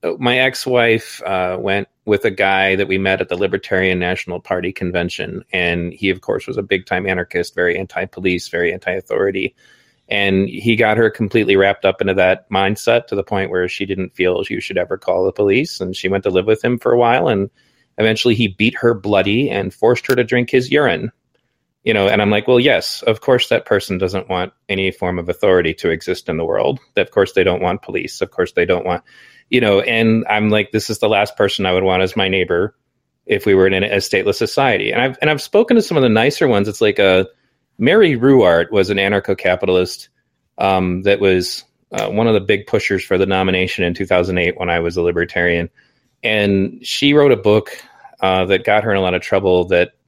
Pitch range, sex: 95-120 Hz, male